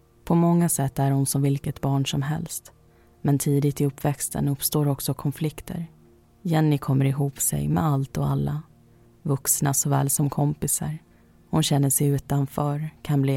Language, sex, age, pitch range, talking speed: Swedish, female, 30-49, 135-150 Hz, 160 wpm